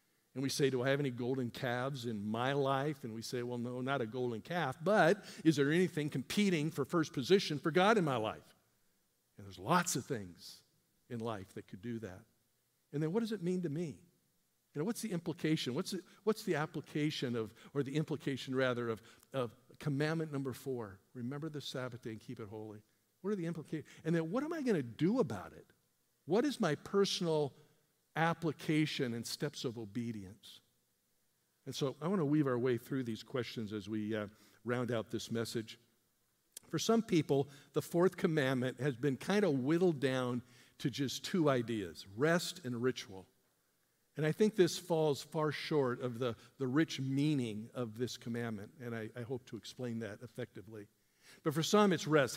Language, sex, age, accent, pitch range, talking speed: English, male, 50-69, American, 120-160 Hz, 190 wpm